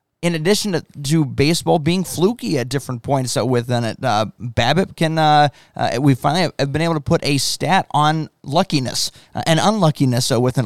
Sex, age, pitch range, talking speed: male, 20-39, 130-160 Hz, 175 wpm